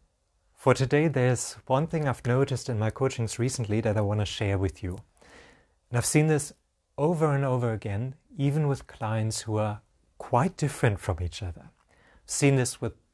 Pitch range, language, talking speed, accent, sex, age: 100-130 Hz, English, 185 wpm, German, male, 30-49